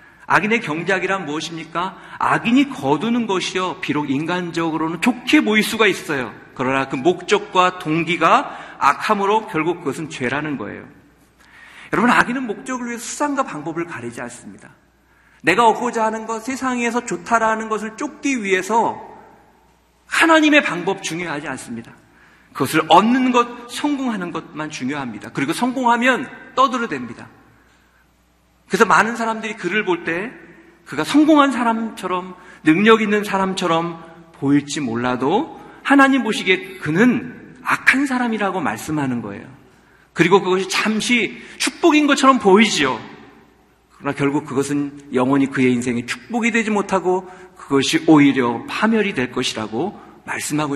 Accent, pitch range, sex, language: native, 145-230 Hz, male, Korean